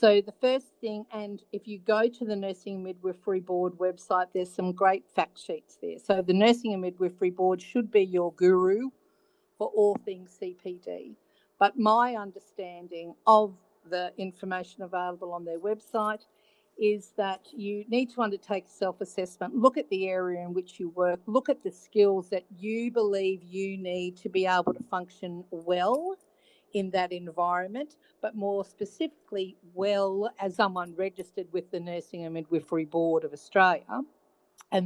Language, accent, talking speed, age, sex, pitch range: English, Australian, 160 wpm, 50-69, female, 180-215 Hz